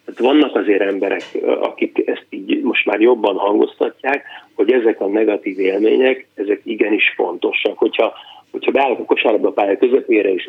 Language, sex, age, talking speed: Hungarian, male, 30-49, 160 wpm